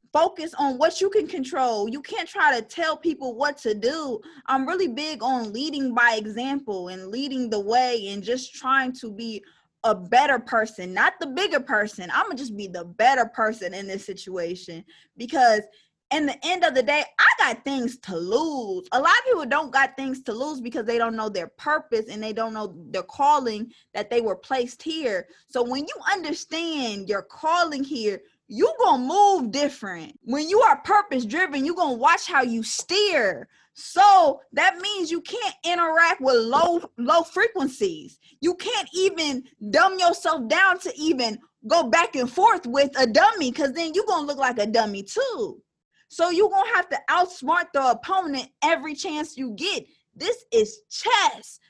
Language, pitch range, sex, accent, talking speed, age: English, 235-345 Hz, female, American, 180 wpm, 20-39